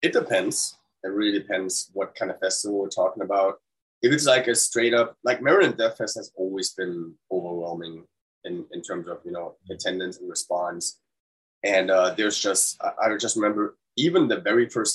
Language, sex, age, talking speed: English, male, 20-39, 190 wpm